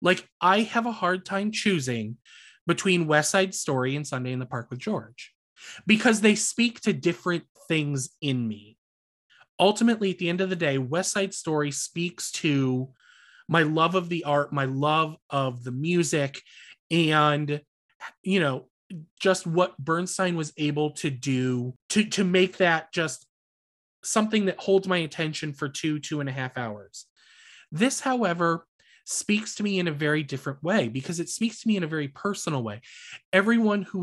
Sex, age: male, 20-39